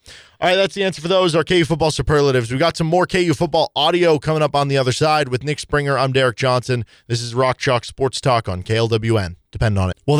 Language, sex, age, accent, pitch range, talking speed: English, male, 20-39, American, 130-170 Hz, 245 wpm